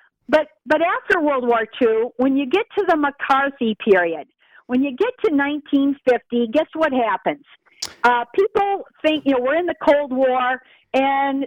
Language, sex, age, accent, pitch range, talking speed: English, female, 50-69, American, 245-320 Hz, 165 wpm